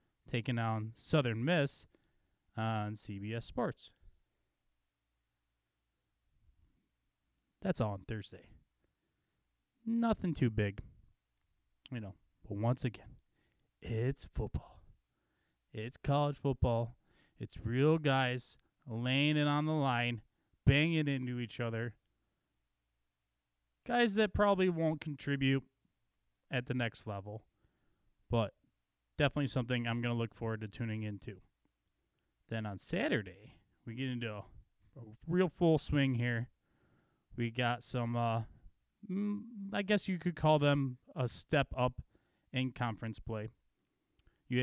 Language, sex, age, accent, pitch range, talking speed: English, male, 20-39, American, 110-140 Hz, 115 wpm